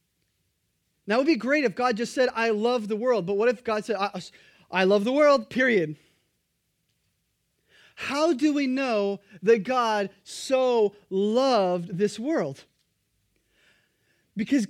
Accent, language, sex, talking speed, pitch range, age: American, English, male, 145 wpm, 195-255 Hz, 30-49